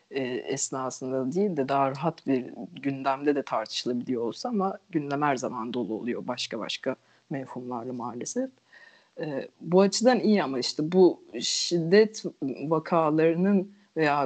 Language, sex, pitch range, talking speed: Turkish, female, 140-190 Hz, 120 wpm